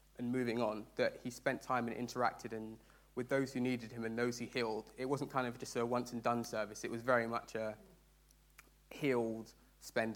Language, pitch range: English, 115-125 Hz